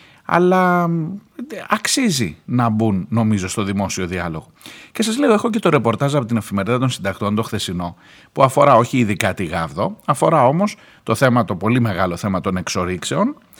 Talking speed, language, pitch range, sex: 170 wpm, Greek, 110-160 Hz, male